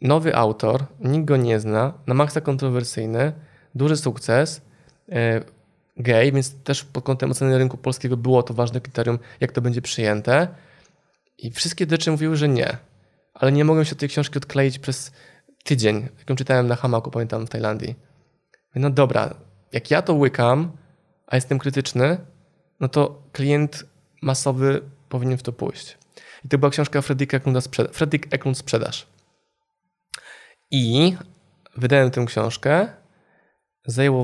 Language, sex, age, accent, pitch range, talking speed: Polish, male, 20-39, native, 125-150 Hz, 145 wpm